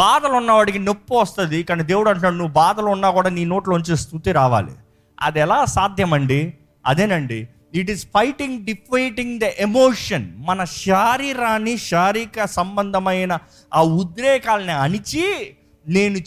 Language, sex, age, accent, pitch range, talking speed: Telugu, male, 30-49, native, 155-235 Hz, 120 wpm